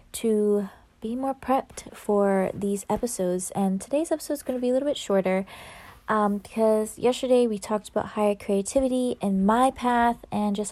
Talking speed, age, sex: 175 wpm, 20-39, female